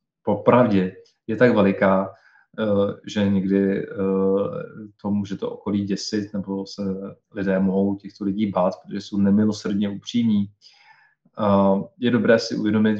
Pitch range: 100-110 Hz